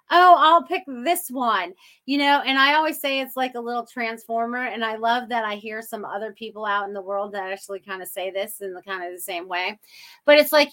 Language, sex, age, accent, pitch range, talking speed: English, female, 30-49, American, 195-235 Hz, 250 wpm